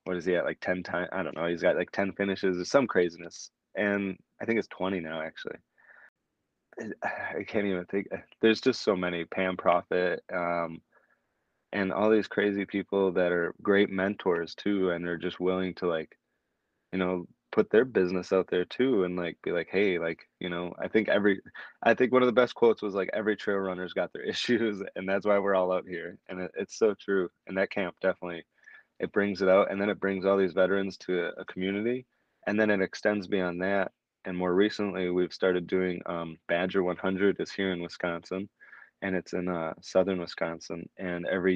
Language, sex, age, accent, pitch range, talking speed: English, male, 20-39, American, 90-100 Hz, 205 wpm